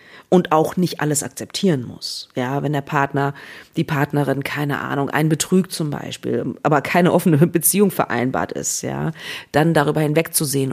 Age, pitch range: 40-59, 150-195 Hz